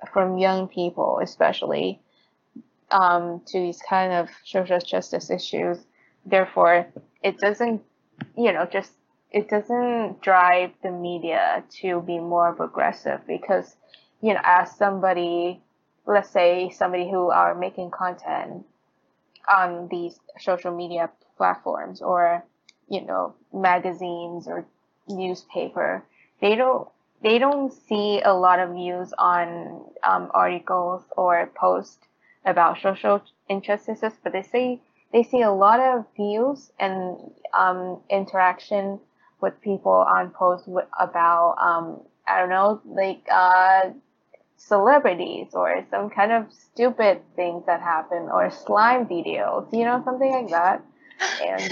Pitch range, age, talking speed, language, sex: 175-215 Hz, 20-39, 125 wpm, Vietnamese, female